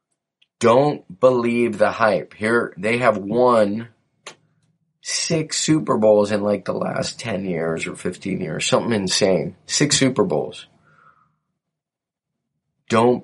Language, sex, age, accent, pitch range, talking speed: English, male, 30-49, American, 95-120 Hz, 120 wpm